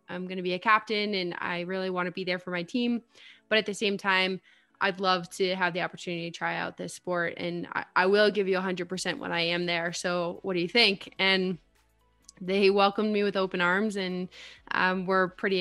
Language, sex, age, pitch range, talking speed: English, female, 20-39, 175-200 Hz, 235 wpm